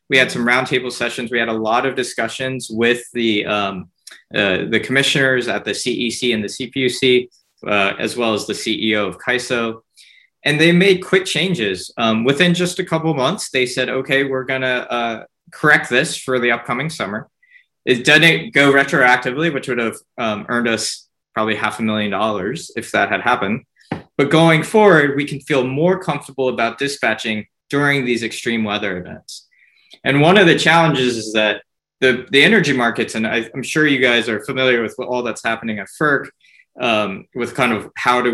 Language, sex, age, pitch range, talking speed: English, male, 20-39, 115-140 Hz, 190 wpm